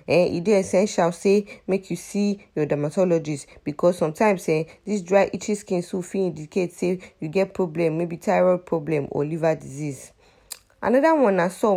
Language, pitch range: English, 160-205 Hz